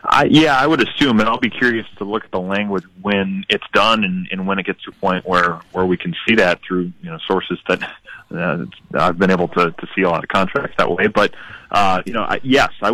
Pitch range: 90-100 Hz